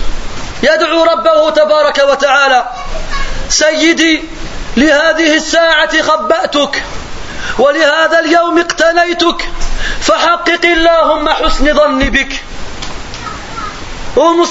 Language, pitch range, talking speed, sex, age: French, 315-350 Hz, 80 wpm, male, 30-49